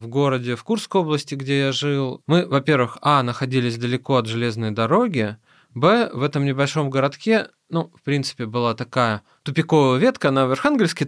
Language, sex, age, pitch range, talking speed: Russian, male, 20-39, 115-145 Hz, 170 wpm